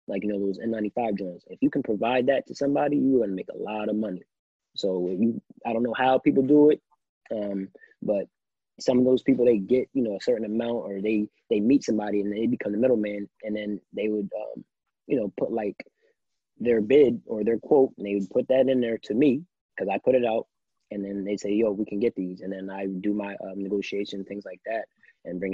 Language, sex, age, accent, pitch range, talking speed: English, male, 20-39, American, 100-115 Hz, 235 wpm